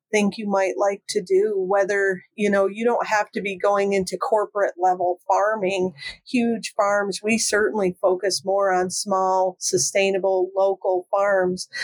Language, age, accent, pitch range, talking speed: English, 50-69, American, 190-210 Hz, 150 wpm